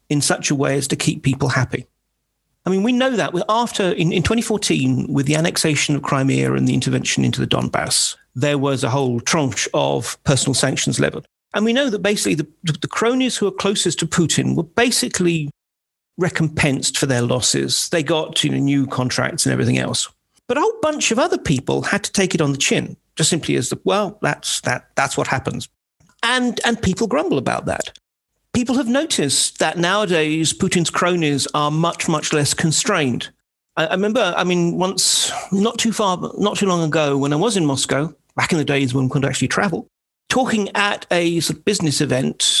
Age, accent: 40-59, British